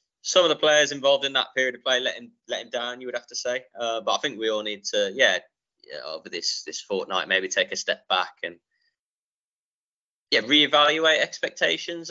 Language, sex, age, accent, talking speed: English, male, 10-29, British, 215 wpm